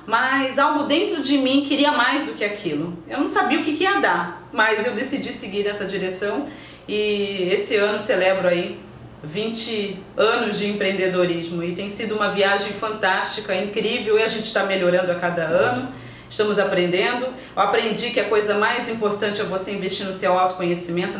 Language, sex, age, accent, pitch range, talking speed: Portuguese, female, 30-49, Brazilian, 185-225 Hz, 180 wpm